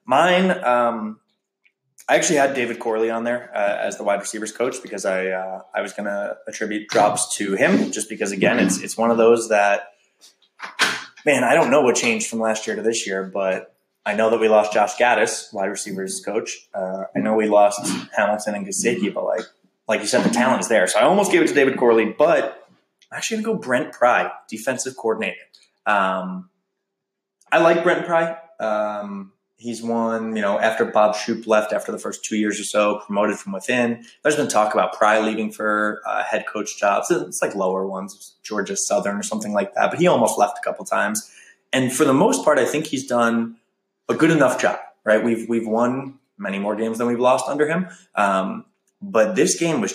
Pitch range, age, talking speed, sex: 105-125 Hz, 20-39, 210 wpm, male